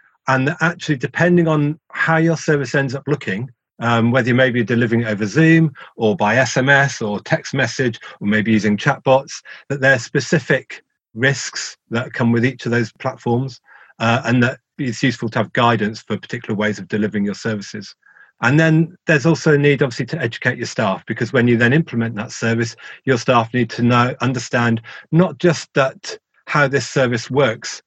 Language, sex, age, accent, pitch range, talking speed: English, male, 40-59, British, 115-145 Hz, 185 wpm